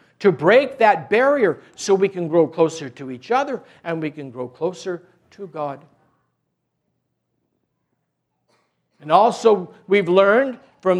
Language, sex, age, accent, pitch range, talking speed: English, male, 60-79, American, 175-255 Hz, 130 wpm